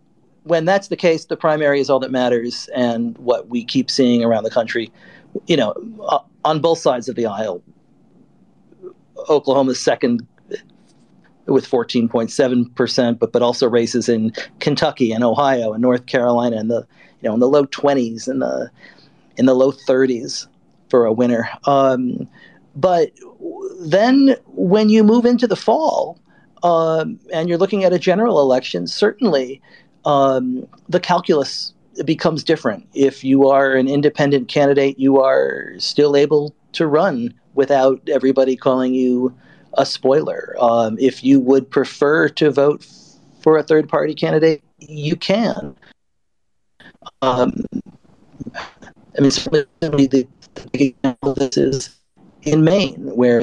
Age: 40-59